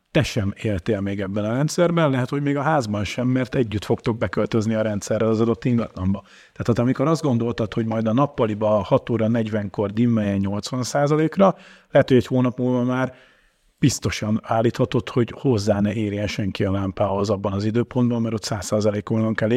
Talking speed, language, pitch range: 175 wpm, Hungarian, 105-135 Hz